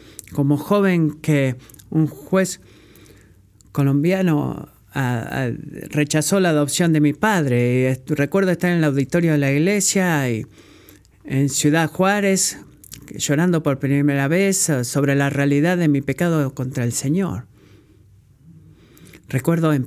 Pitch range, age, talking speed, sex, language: 115-160 Hz, 50-69, 110 wpm, male, Spanish